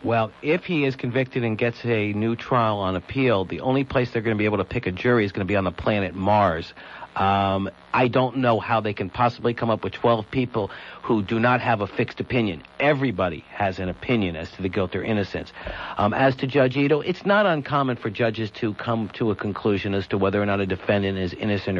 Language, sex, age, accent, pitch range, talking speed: English, male, 60-79, American, 100-125 Hz, 235 wpm